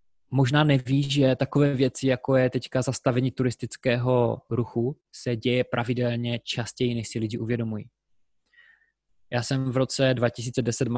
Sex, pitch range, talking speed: male, 115-130 Hz, 130 wpm